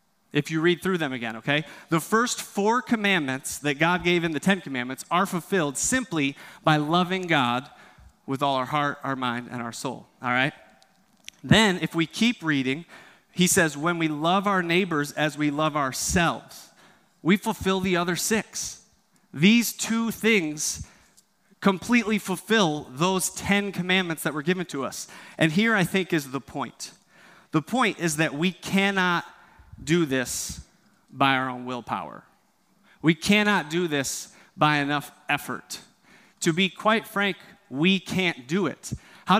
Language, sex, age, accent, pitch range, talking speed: English, male, 30-49, American, 150-200 Hz, 160 wpm